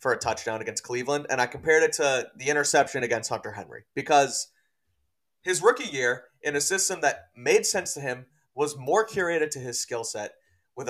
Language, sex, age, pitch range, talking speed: English, male, 30-49, 125-160 Hz, 195 wpm